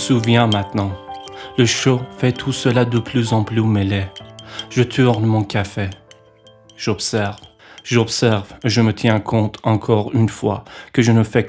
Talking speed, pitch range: 160 wpm, 100-115 Hz